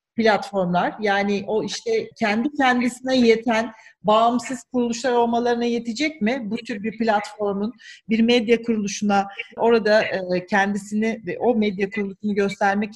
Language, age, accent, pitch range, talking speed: English, 40-59, Turkish, 205-265 Hz, 120 wpm